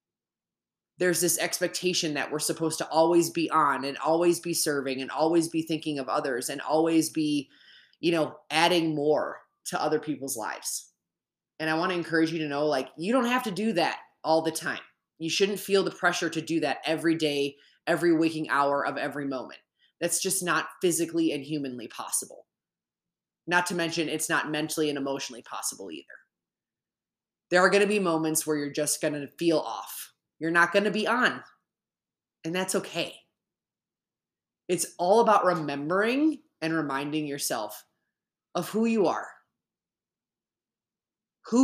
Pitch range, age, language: 150-180 Hz, 20-39, English